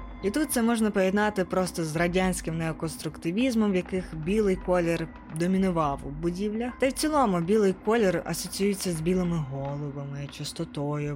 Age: 20-39